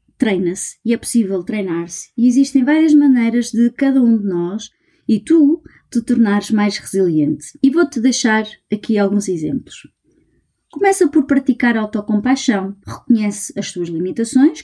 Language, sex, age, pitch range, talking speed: Portuguese, female, 20-39, 210-275 Hz, 140 wpm